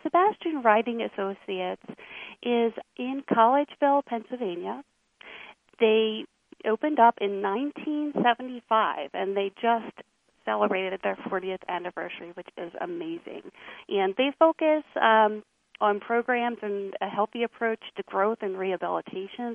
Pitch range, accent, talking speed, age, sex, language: 200-255 Hz, American, 110 wpm, 40-59, female, English